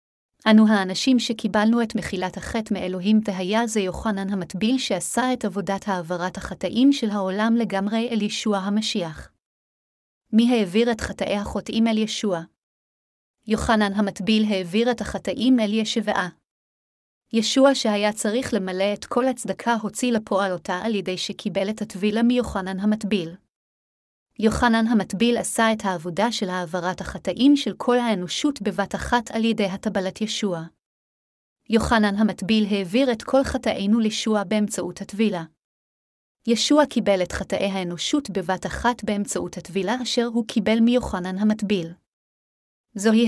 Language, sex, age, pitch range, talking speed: Hebrew, female, 30-49, 195-230 Hz, 130 wpm